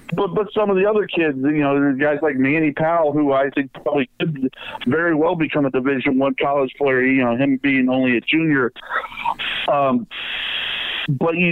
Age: 50-69